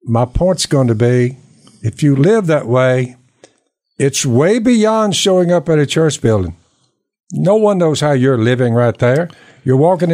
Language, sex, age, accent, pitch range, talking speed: English, male, 60-79, American, 125-180 Hz, 170 wpm